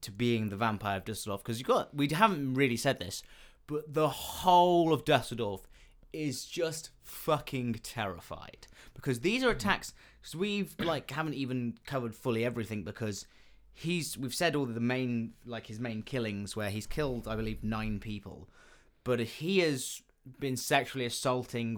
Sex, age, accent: male, 20-39, British